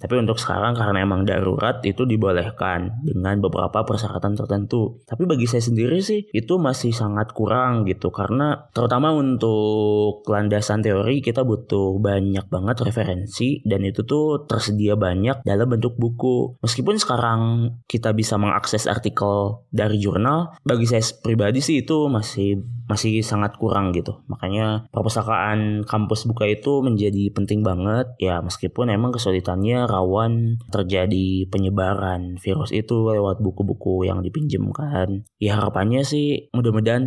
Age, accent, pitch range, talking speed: 20-39, native, 100-120 Hz, 135 wpm